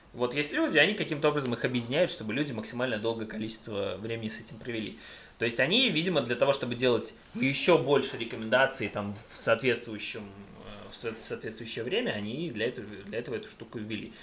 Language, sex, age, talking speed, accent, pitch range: Russian, male, 20-39, 175 wpm, native, 110-135 Hz